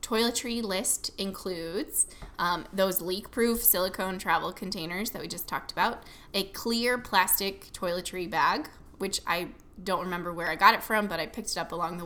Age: 20-39